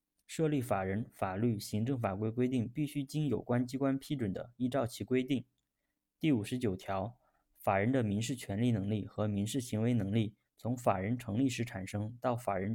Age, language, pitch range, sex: 20-39, Chinese, 105-125 Hz, male